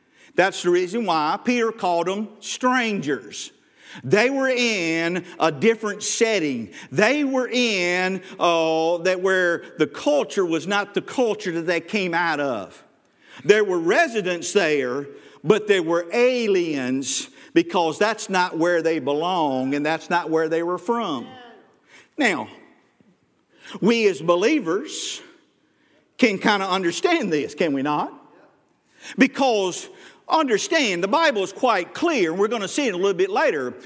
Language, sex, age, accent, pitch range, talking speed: English, male, 50-69, American, 175-265 Hz, 145 wpm